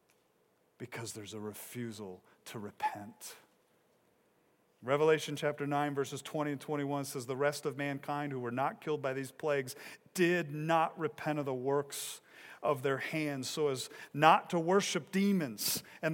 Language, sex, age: English, male, 40-59